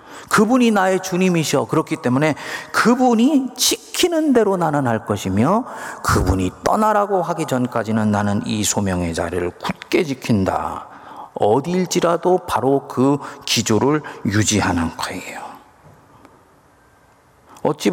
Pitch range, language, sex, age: 110-175 Hz, Korean, male, 40-59